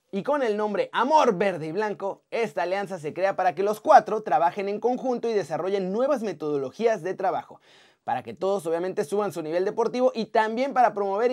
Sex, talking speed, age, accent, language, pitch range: male, 195 wpm, 30-49, Mexican, Spanish, 195-245 Hz